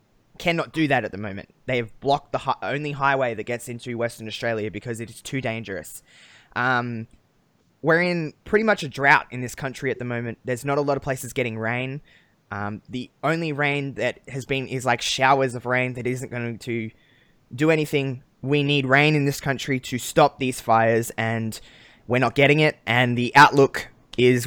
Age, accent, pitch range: 20-39, Australian, 120-145 Hz